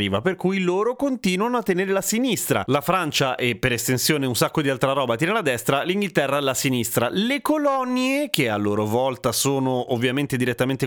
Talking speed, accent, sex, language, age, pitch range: 180 wpm, native, male, Italian, 30-49, 120-180 Hz